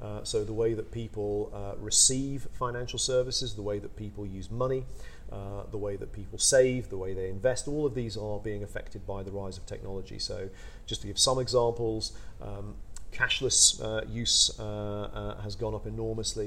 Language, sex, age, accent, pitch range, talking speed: English, male, 40-59, British, 100-115 Hz, 195 wpm